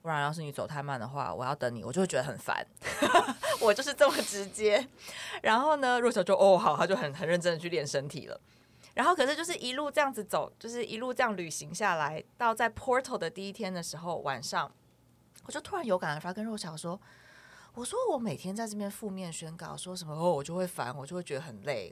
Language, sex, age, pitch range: Chinese, female, 20-39, 155-235 Hz